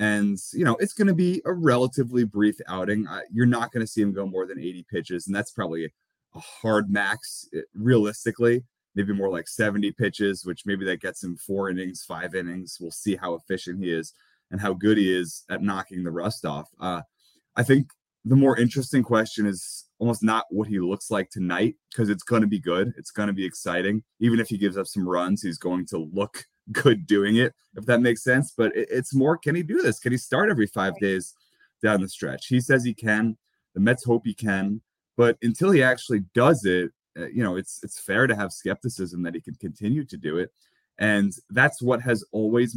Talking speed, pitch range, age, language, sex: 220 wpm, 95-120 Hz, 20-39, English, male